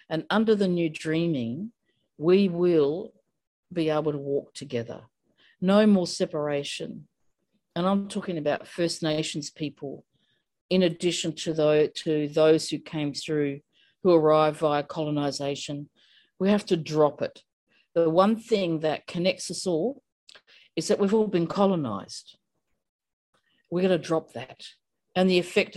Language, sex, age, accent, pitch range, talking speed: English, female, 50-69, Australian, 150-185 Hz, 135 wpm